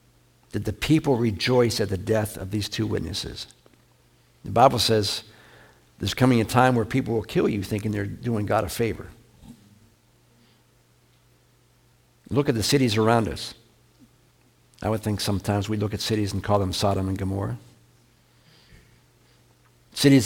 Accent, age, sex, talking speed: American, 60-79, male, 150 wpm